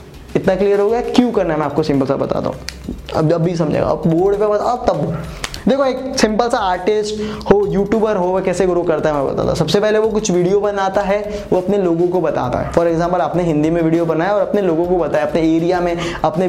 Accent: native